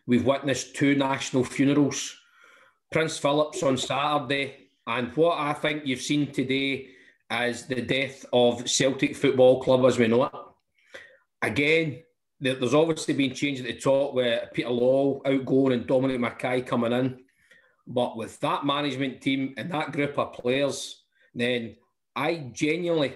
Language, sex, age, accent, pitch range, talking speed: English, male, 40-59, British, 130-145 Hz, 150 wpm